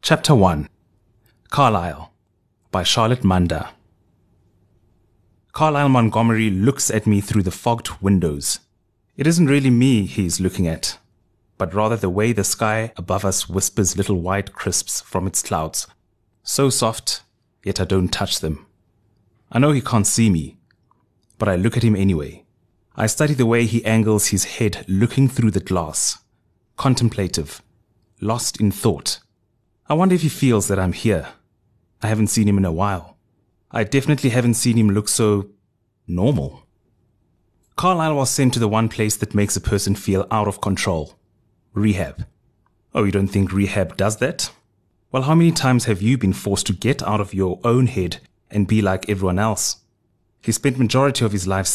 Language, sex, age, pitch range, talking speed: English, male, 30-49, 95-115 Hz, 165 wpm